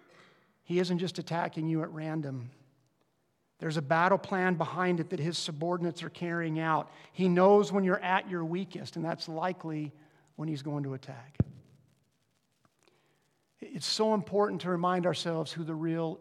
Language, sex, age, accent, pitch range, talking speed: English, male, 50-69, American, 165-220 Hz, 160 wpm